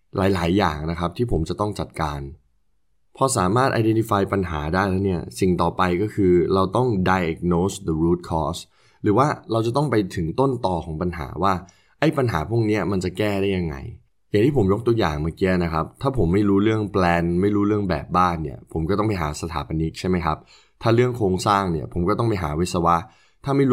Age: 20-39